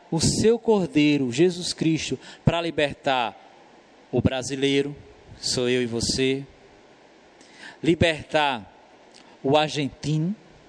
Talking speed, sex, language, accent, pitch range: 90 wpm, male, Portuguese, Brazilian, 140-210 Hz